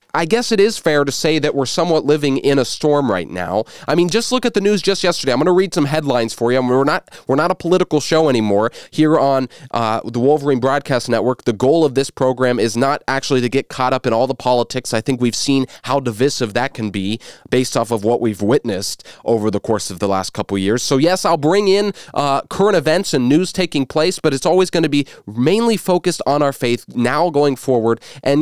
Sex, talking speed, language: male, 245 wpm, English